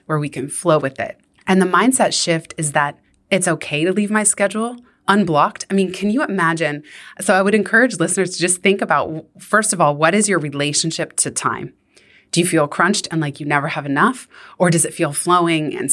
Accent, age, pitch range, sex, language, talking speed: American, 20-39, 160-200 Hz, female, English, 220 wpm